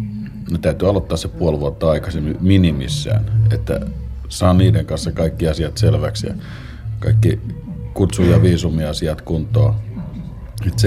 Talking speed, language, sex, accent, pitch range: 110 wpm, Finnish, male, native, 80-110 Hz